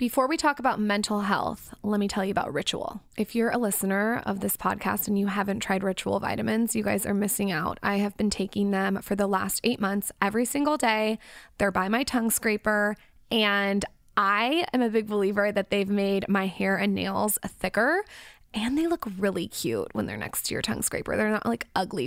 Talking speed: 210 wpm